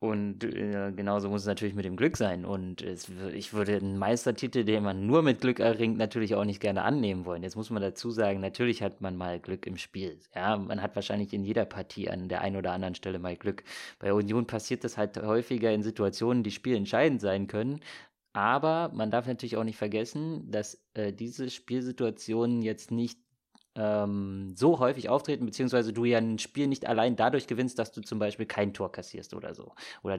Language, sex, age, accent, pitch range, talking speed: German, male, 20-39, German, 105-125 Hz, 200 wpm